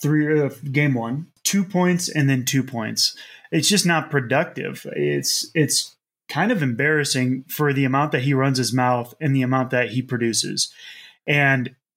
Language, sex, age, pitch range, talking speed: English, male, 30-49, 125-150 Hz, 170 wpm